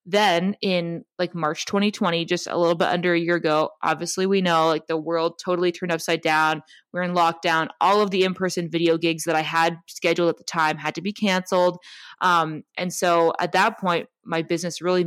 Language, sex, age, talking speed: English, female, 20-39, 205 wpm